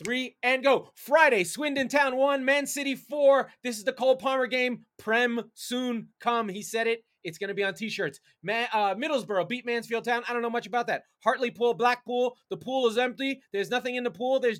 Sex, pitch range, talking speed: male, 190-250 Hz, 205 wpm